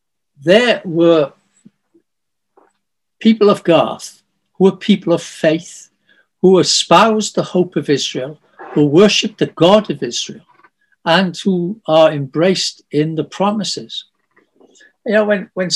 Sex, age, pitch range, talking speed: male, 60-79, 150-205 Hz, 125 wpm